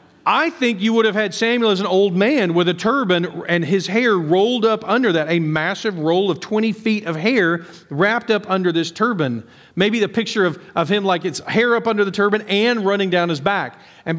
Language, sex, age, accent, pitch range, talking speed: English, male, 40-59, American, 140-195 Hz, 225 wpm